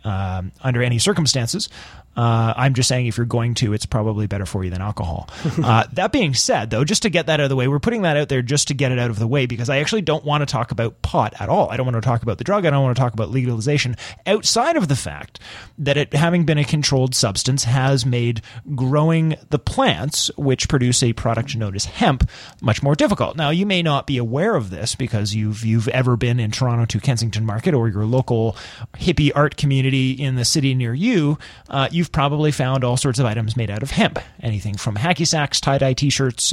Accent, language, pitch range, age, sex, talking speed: American, English, 115-145 Hz, 30-49, male, 240 wpm